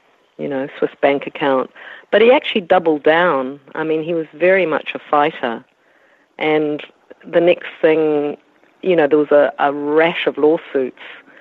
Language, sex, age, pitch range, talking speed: English, female, 50-69, 135-165 Hz, 165 wpm